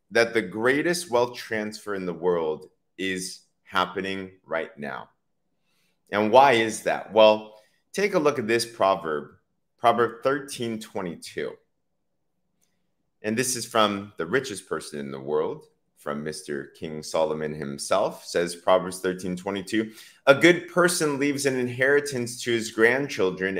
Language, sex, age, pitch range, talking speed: English, male, 30-49, 110-170 Hz, 130 wpm